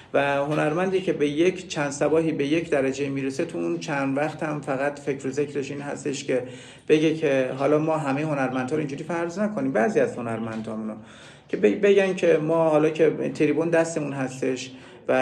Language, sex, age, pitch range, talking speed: Persian, male, 50-69, 125-155 Hz, 180 wpm